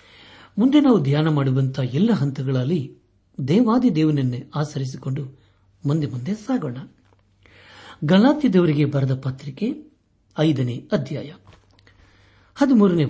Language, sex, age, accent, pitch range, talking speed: Kannada, male, 60-79, native, 100-160 Hz, 80 wpm